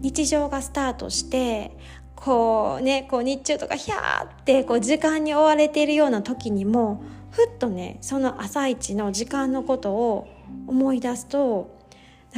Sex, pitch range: female, 220-300 Hz